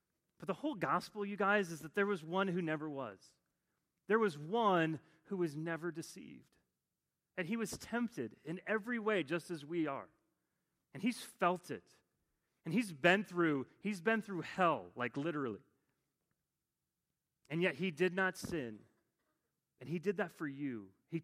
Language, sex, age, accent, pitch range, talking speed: English, male, 30-49, American, 155-215 Hz, 165 wpm